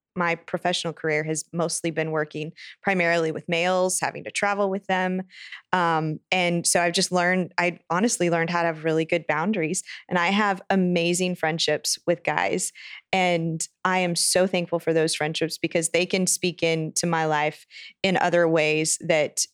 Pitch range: 165-185 Hz